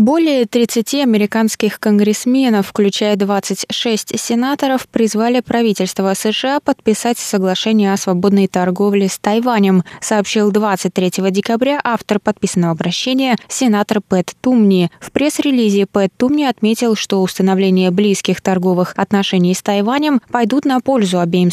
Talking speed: 115 wpm